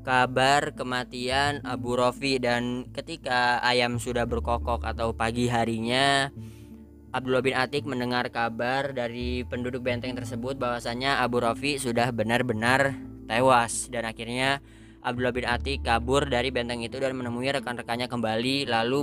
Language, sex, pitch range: Indonesian, female, 115-135 Hz